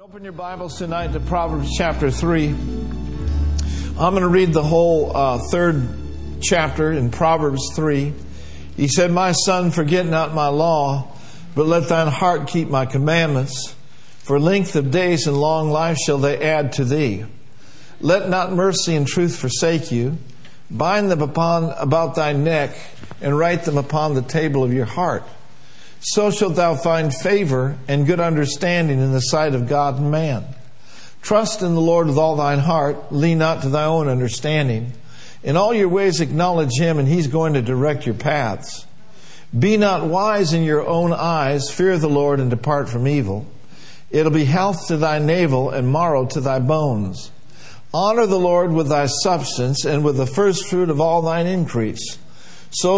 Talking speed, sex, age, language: 170 wpm, male, 50-69, English